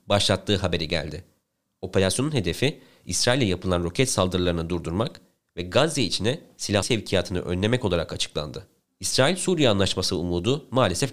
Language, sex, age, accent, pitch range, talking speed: Turkish, male, 30-49, native, 90-120 Hz, 120 wpm